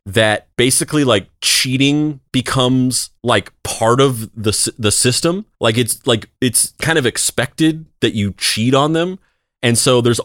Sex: male